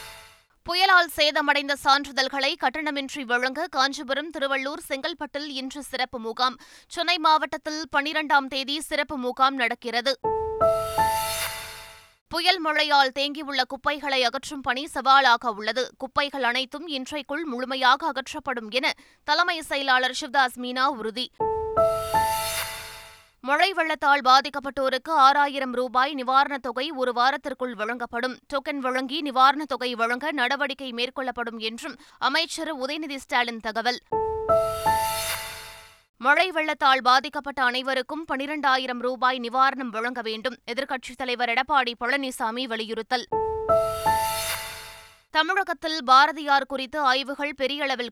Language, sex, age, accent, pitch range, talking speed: Tamil, female, 20-39, native, 245-295 Hz, 100 wpm